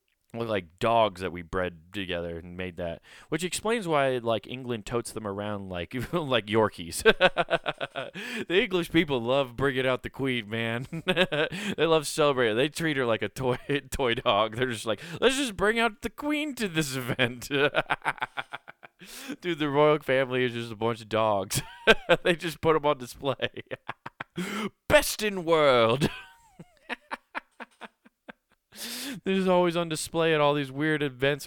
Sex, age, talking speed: male, 20-39, 155 wpm